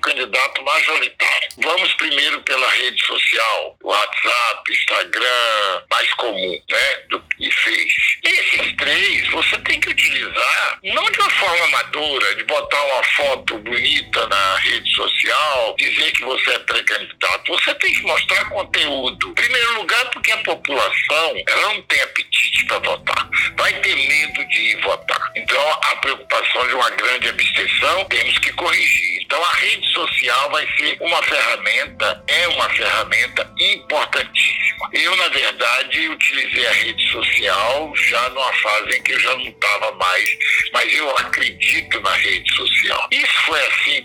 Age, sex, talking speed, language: 60-79, male, 145 wpm, Portuguese